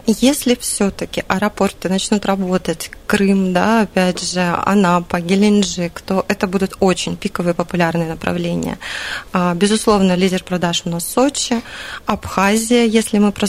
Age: 20-39